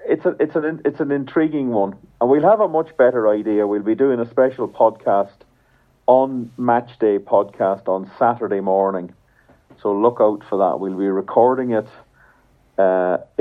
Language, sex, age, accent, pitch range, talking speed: English, male, 50-69, Irish, 95-115 Hz, 170 wpm